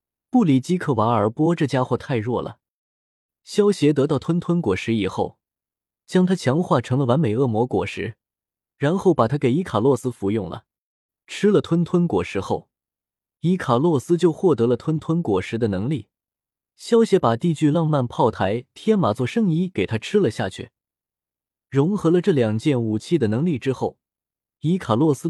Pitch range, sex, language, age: 115-170 Hz, male, Chinese, 20-39